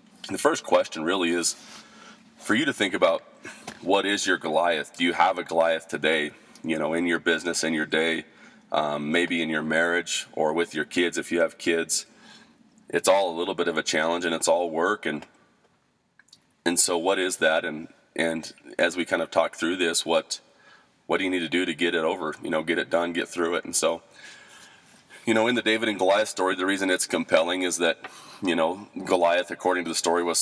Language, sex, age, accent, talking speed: English, male, 30-49, American, 220 wpm